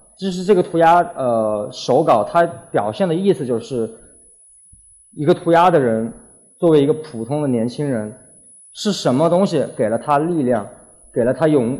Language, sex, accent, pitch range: Chinese, male, native, 120-165 Hz